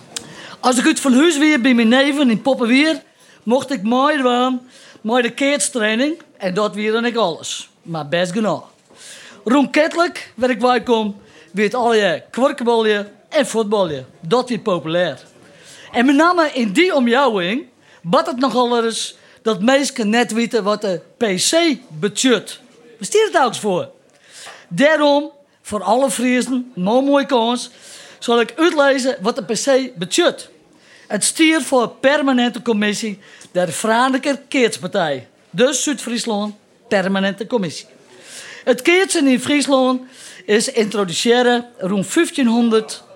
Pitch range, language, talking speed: 210-270 Hz, Dutch, 135 wpm